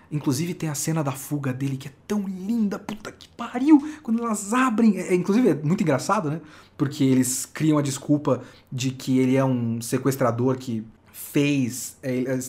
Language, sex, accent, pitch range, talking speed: Portuguese, male, Brazilian, 135-210 Hz, 175 wpm